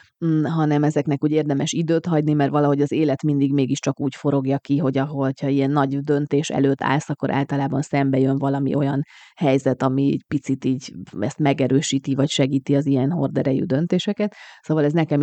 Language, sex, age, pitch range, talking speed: Hungarian, female, 30-49, 140-160 Hz, 175 wpm